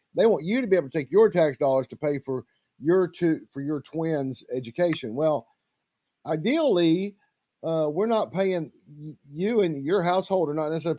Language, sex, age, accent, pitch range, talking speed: English, male, 50-69, American, 140-195 Hz, 180 wpm